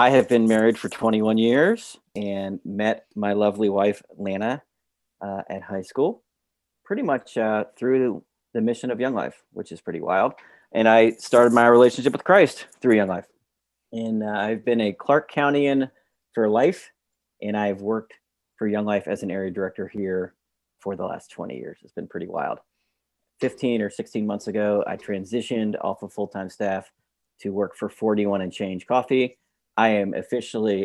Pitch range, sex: 95-115 Hz, male